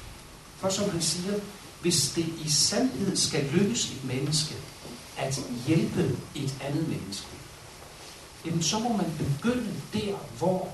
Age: 60-79